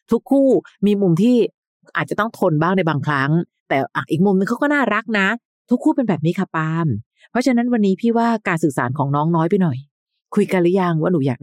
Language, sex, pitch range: Thai, female, 150-200 Hz